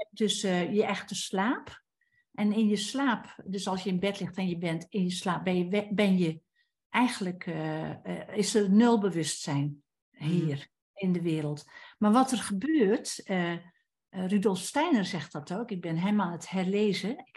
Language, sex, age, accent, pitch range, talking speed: English, female, 60-79, Dutch, 185-240 Hz, 185 wpm